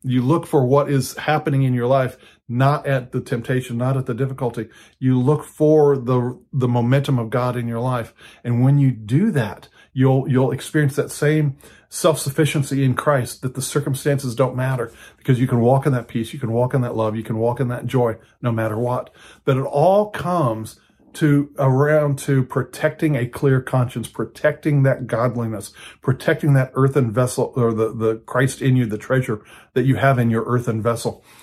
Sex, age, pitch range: male, 40-59, 120-150 Hz